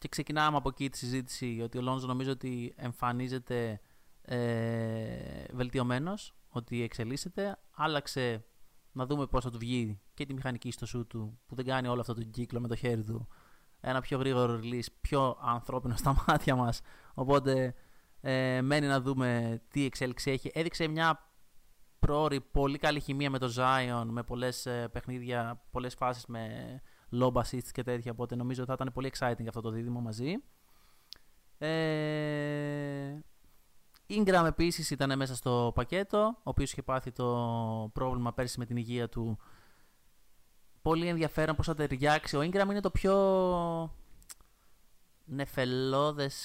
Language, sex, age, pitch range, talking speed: Greek, male, 20-39, 120-145 Hz, 150 wpm